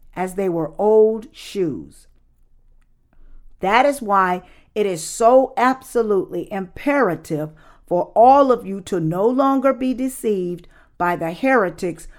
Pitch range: 165-235 Hz